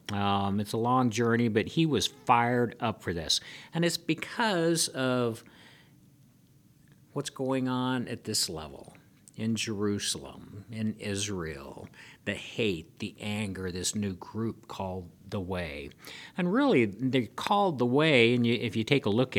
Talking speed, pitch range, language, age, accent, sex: 150 wpm, 105-130 Hz, English, 50-69, American, male